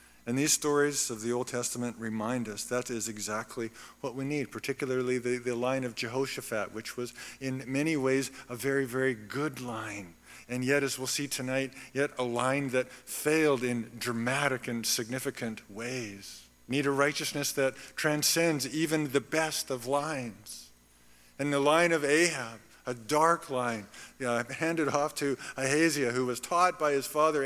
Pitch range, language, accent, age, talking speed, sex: 120-145 Hz, English, American, 50-69, 165 wpm, male